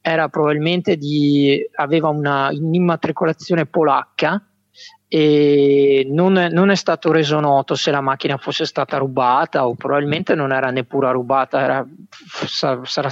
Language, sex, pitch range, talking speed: Italian, male, 135-150 Hz, 130 wpm